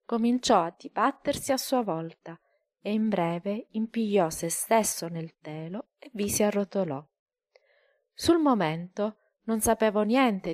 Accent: native